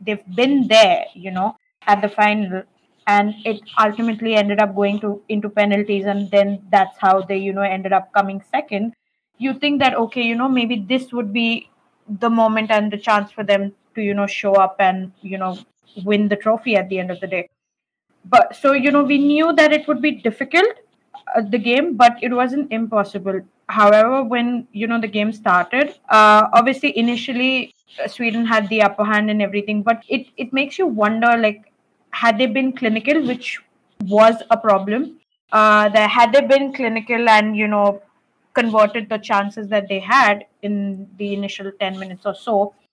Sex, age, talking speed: female, 20-39, 185 wpm